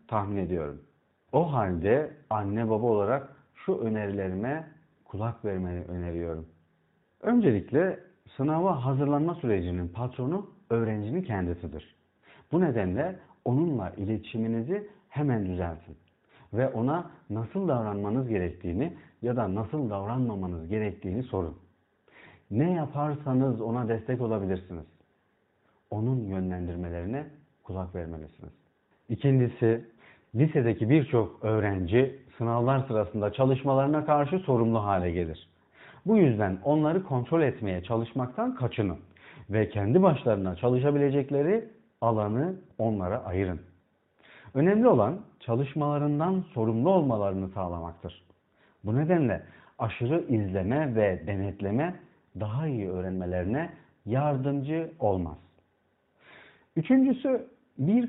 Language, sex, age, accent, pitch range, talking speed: Turkish, male, 50-69, native, 95-145 Hz, 90 wpm